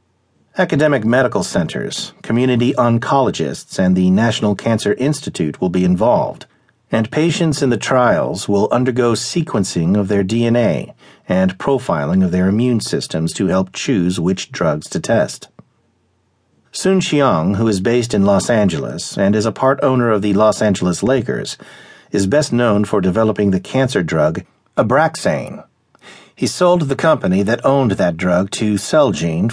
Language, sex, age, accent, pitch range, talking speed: English, male, 50-69, American, 100-130 Hz, 150 wpm